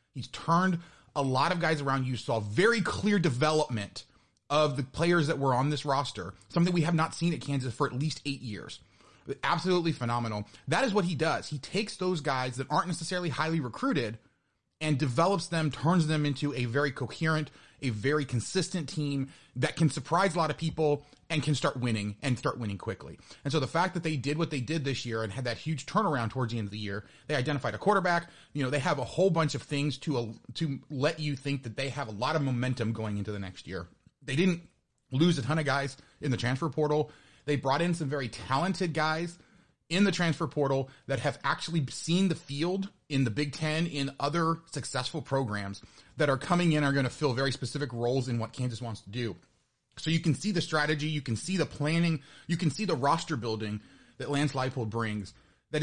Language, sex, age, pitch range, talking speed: English, male, 30-49, 130-165 Hz, 220 wpm